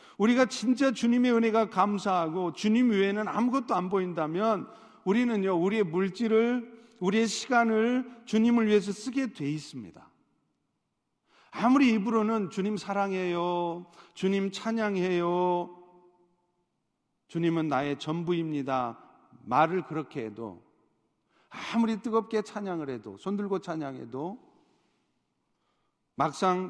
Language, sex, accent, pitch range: Korean, male, native, 150-210 Hz